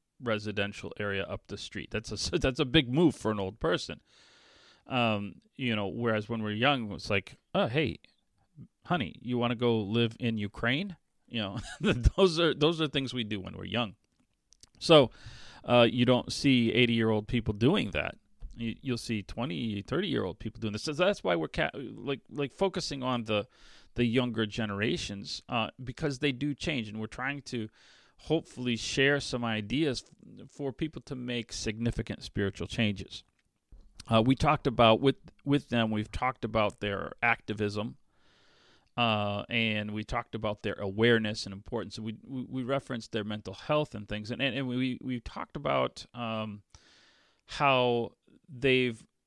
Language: English